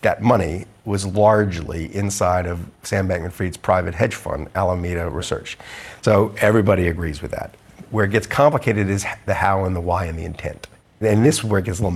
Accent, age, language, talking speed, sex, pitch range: American, 50-69, English, 200 wpm, male, 95-110 Hz